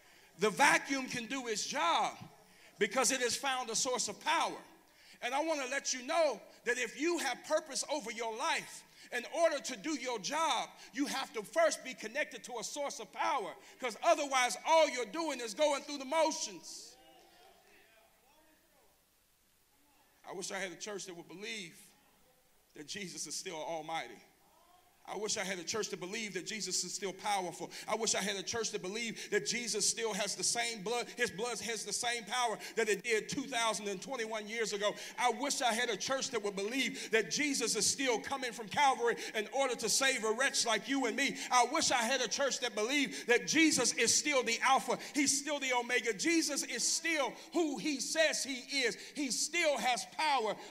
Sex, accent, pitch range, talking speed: male, American, 215-290 Hz, 195 wpm